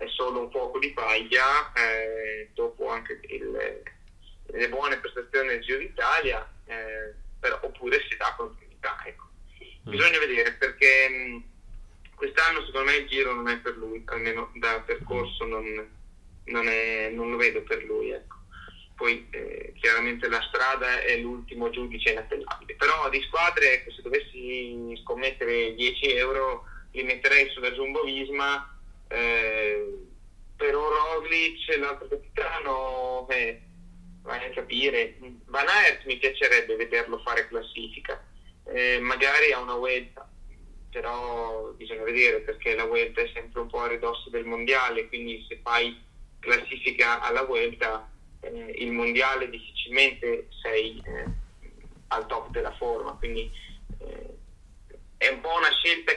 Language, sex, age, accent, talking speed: Italian, male, 20-39, native, 135 wpm